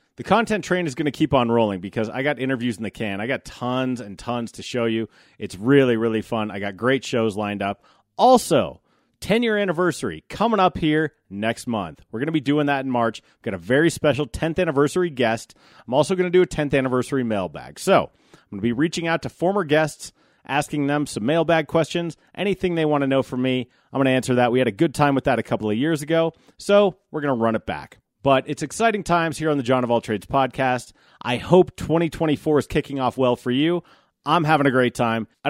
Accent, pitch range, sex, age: American, 115-160 Hz, male, 30-49